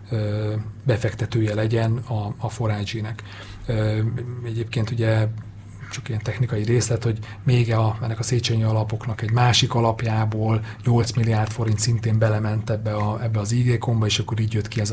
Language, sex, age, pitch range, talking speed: Hungarian, male, 30-49, 105-120 Hz, 150 wpm